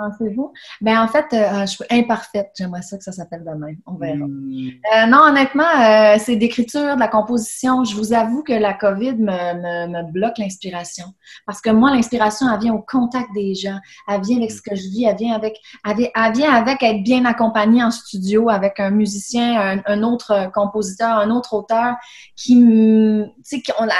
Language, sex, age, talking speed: French, female, 20-39, 200 wpm